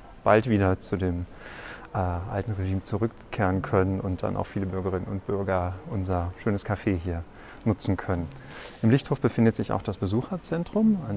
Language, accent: German, German